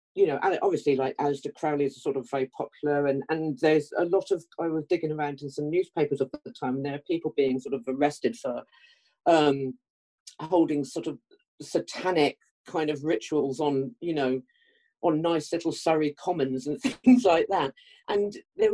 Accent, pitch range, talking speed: British, 135-190 Hz, 190 wpm